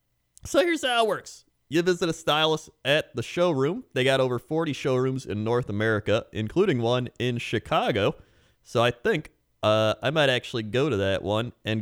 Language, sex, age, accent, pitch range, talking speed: English, male, 30-49, American, 120-175 Hz, 185 wpm